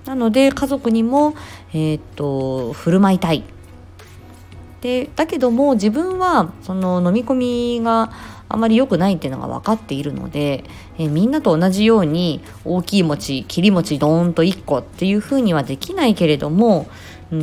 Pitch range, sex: 150-245 Hz, female